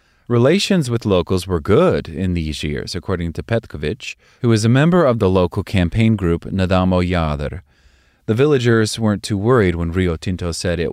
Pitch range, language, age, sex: 85-100 Hz, English, 30-49, male